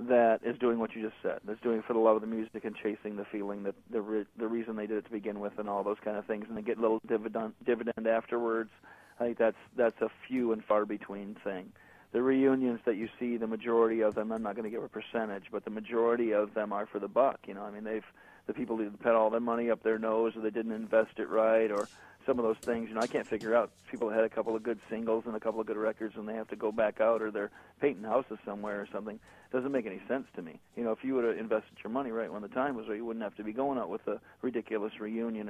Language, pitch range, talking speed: English, 105-115 Hz, 285 wpm